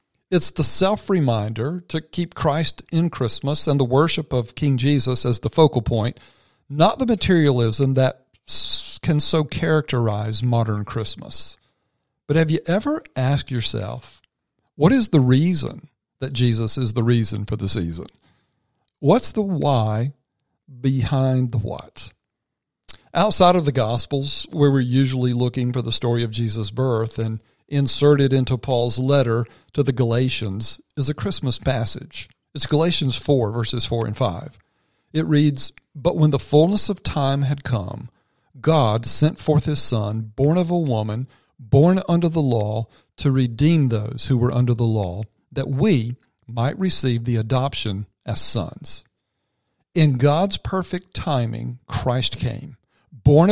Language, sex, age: English, male, 50-69